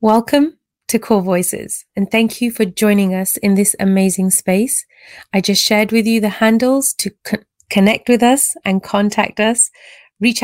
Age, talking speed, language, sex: 30-49, 165 wpm, English, female